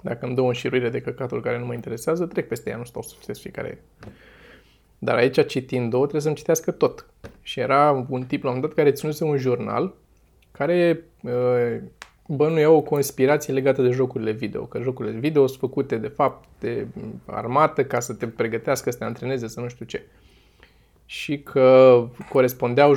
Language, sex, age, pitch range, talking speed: Romanian, male, 20-39, 120-160 Hz, 180 wpm